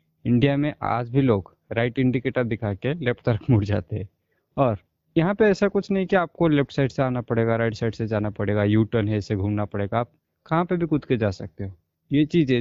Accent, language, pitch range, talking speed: native, Hindi, 105-150 Hz, 235 wpm